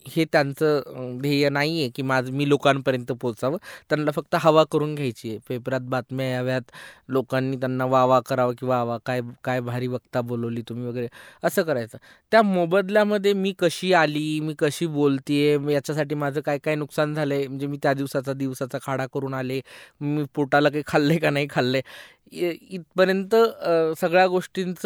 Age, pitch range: 20-39, 140-185 Hz